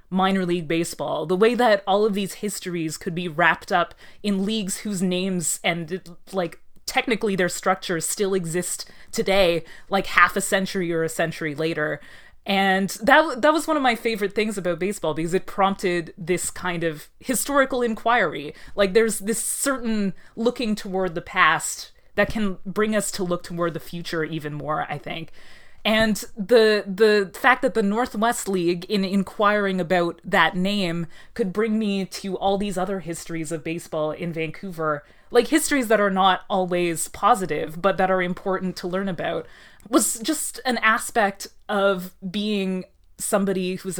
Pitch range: 170-210 Hz